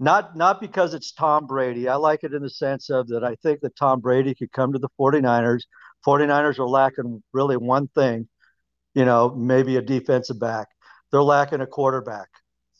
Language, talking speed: English, 190 wpm